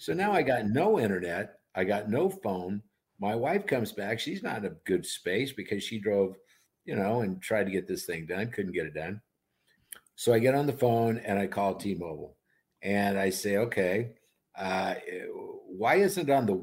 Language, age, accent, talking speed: English, 50-69, American, 200 wpm